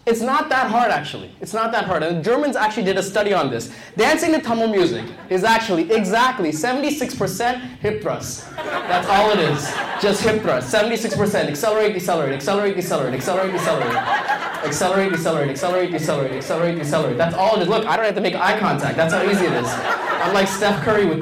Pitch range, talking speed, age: 180-240 Hz, 195 wpm, 20-39